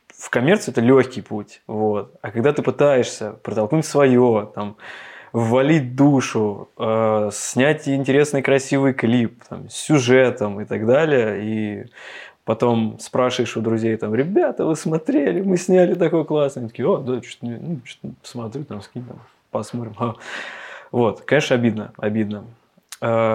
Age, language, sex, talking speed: 20-39, Russian, male, 140 wpm